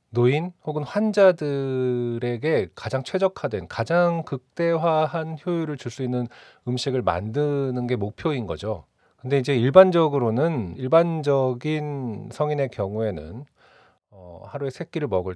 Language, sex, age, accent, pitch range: Korean, male, 30-49, native, 110-150 Hz